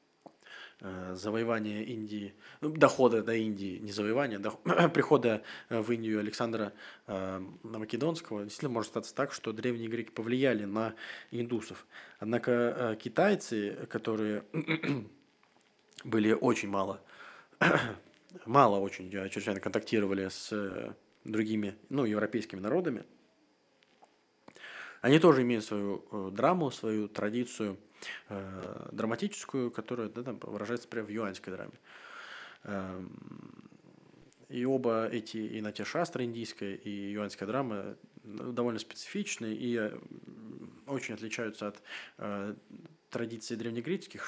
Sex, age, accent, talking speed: male, 20-39, native, 100 wpm